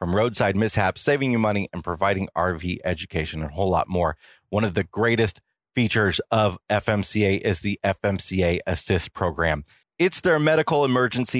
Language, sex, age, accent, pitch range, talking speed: English, male, 30-49, American, 90-120 Hz, 165 wpm